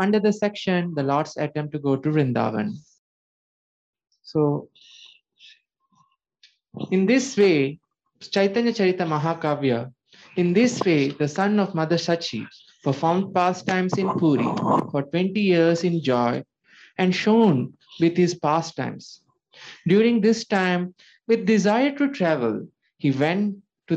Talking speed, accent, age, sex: 125 wpm, Indian, 20-39, male